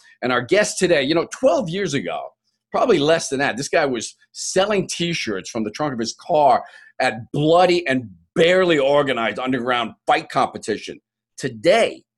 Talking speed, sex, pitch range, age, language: 165 wpm, male, 130-185 Hz, 40-59, English